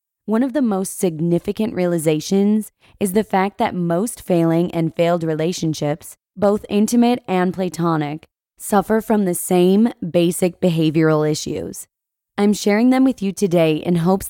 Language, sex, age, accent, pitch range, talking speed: English, female, 20-39, American, 165-210 Hz, 145 wpm